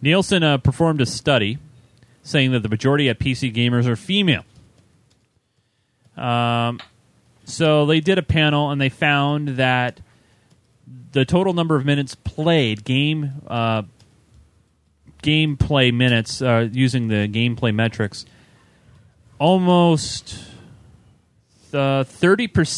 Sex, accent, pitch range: male, American, 115-150 Hz